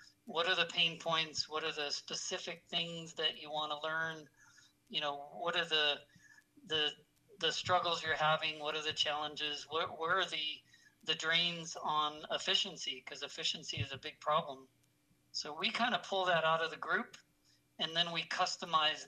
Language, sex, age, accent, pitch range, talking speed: English, male, 50-69, American, 145-165 Hz, 180 wpm